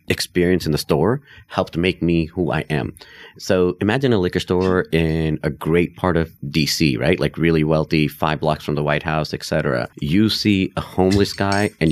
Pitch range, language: 75-90 Hz, English